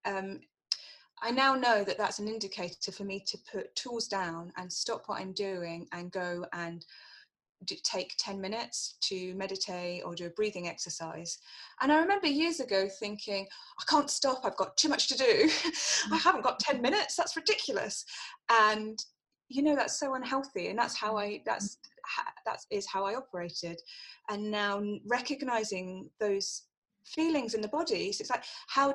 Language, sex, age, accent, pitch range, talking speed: English, female, 20-39, British, 185-270 Hz, 170 wpm